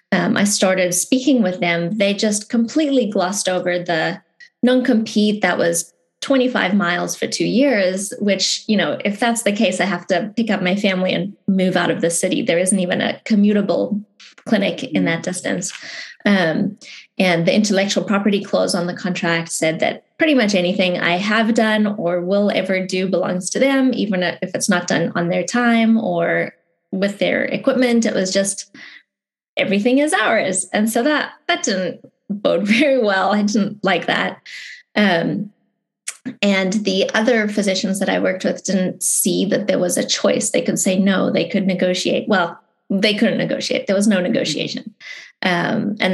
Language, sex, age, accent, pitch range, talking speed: English, female, 20-39, American, 185-235 Hz, 175 wpm